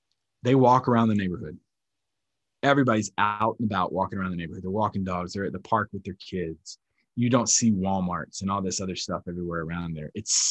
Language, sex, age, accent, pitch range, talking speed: English, male, 20-39, American, 95-115 Hz, 205 wpm